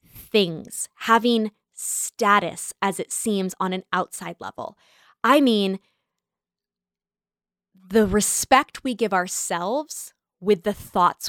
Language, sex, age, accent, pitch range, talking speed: English, female, 20-39, American, 185-220 Hz, 105 wpm